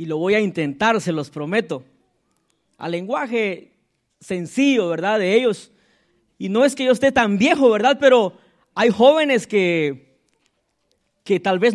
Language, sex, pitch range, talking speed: Spanish, male, 210-270 Hz, 155 wpm